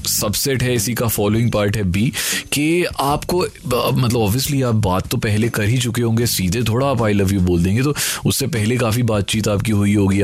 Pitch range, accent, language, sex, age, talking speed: 95-125 Hz, native, Hindi, male, 30-49, 210 wpm